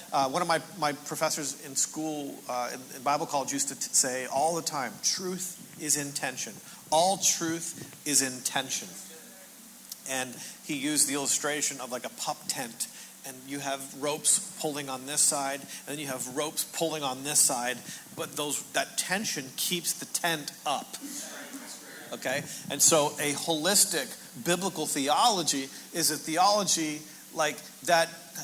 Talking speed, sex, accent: 155 wpm, male, American